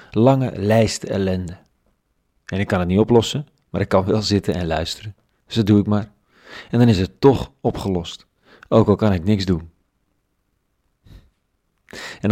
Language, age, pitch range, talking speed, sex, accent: Dutch, 40-59, 95-110 Hz, 165 wpm, male, Dutch